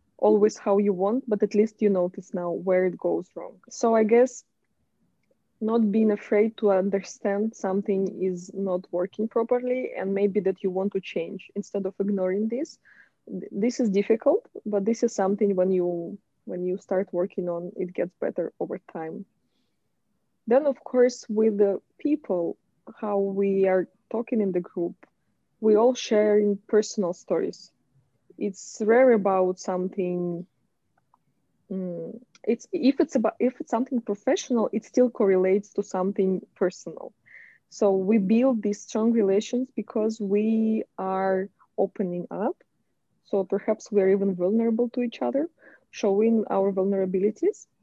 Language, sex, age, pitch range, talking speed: English, female, 20-39, 190-230 Hz, 145 wpm